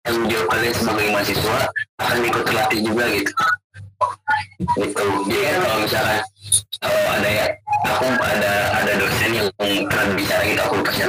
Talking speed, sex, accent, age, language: 140 wpm, male, native, 30-49, Indonesian